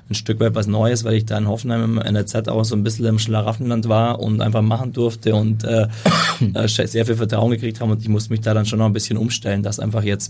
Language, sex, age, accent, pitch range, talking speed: German, male, 20-39, German, 105-115 Hz, 260 wpm